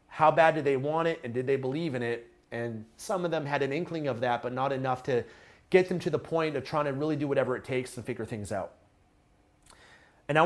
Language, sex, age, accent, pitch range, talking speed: English, male, 30-49, American, 130-160 Hz, 250 wpm